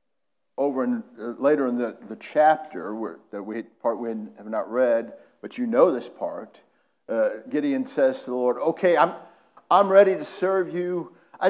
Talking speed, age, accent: 175 wpm, 50-69, American